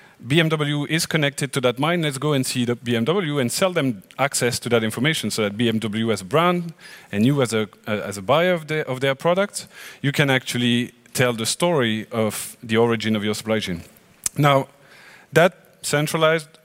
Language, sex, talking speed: German, male, 190 wpm